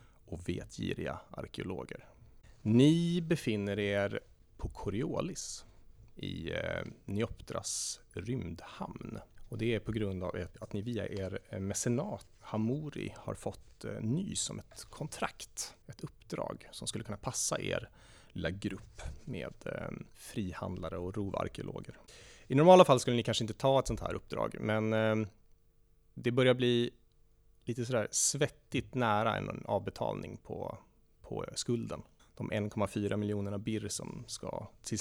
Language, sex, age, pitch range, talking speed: Swedish, male, 30-49, 100-120 Hz, 125 wpm